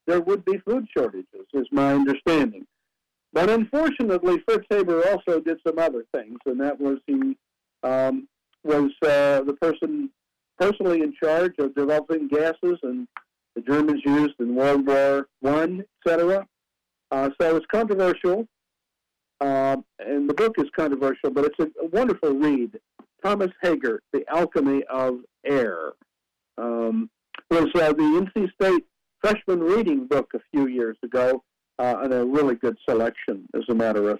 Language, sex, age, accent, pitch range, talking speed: English, male, 60-79, American, 140-190 Hz, 155 wpm